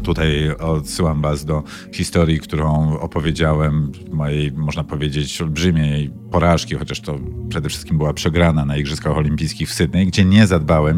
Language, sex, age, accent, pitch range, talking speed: Polish, male, 50-69, native, 75-95 Hz, 140 wpm